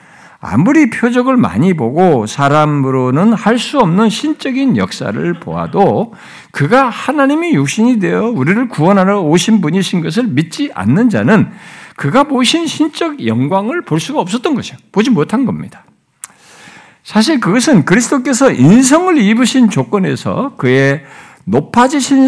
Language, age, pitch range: Korean, 60-79, 165-260 Hz